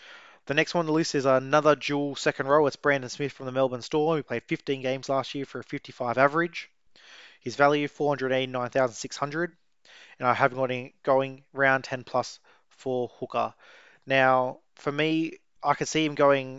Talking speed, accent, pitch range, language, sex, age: 180 wpm, Australian, 125-145 Hz, English, male, 20-39